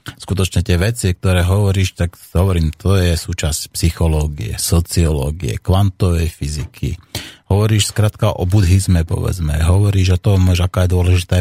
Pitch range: 85-105 Hz